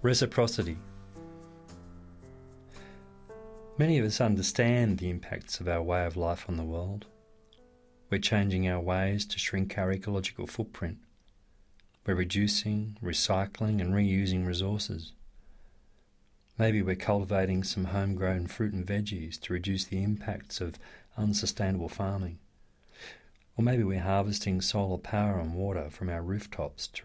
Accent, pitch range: Australian, 90-105 Hz